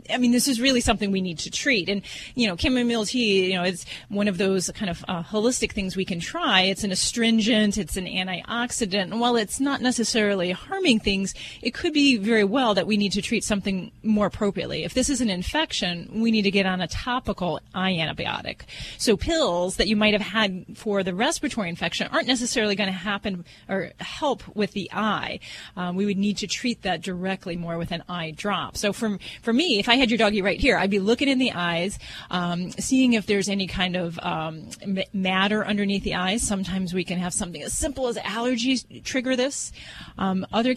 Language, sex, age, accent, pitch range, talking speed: English, female, 30-49, American, 185-240 Hz, 215 wpm